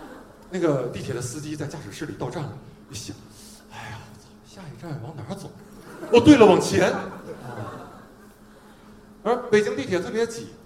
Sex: male